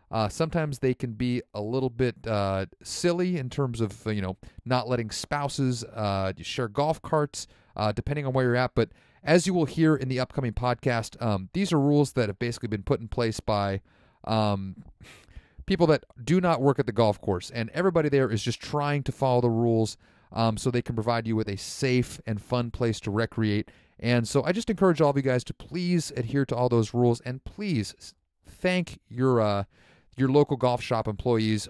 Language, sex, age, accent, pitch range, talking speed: English, male, 40-59, American, 105-135 Hz, 205 wpm